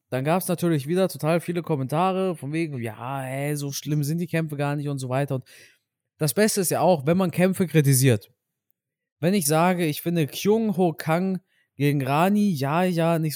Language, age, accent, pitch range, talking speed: German, 20-39, German, 135-175 Hz, 200 wpm